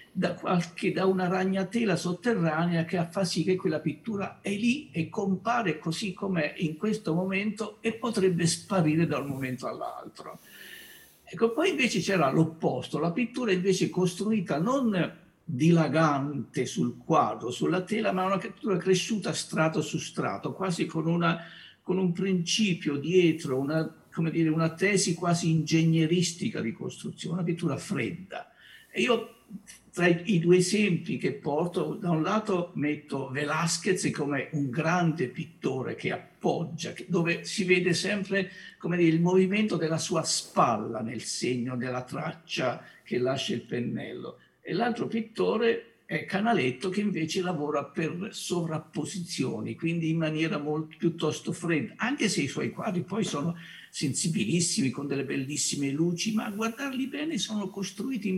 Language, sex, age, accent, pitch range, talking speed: Italian, male, 60-79, native, 160-200 Hz, 145 wpm